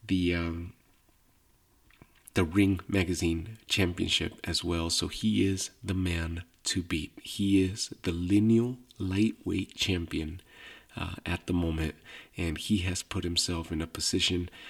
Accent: American